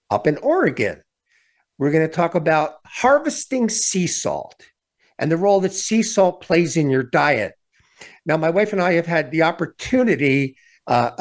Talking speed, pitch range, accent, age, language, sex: 165 wpm, 150-190 Hz, American, 50-69, English, male